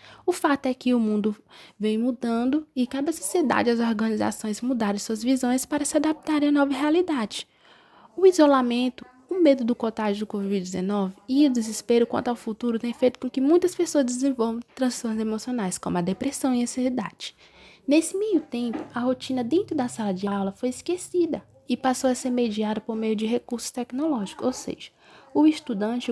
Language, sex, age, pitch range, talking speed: Portuguese, female, 20-39, 220-290 Hz, 180 wpm